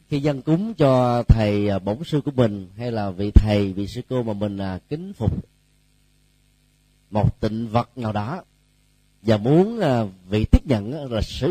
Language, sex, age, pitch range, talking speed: Vietnamese, male, 30-49, 110-150 Hz, 175 wpm